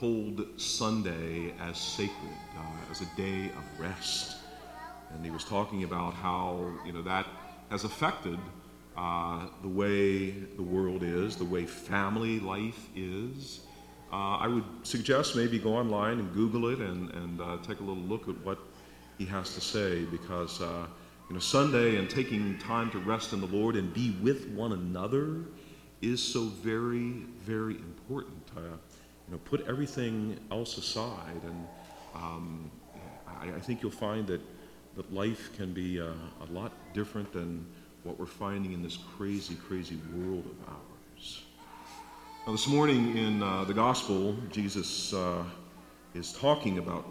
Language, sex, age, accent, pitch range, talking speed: English, male, 50-69, American, 85-110 Hz, 155 wpm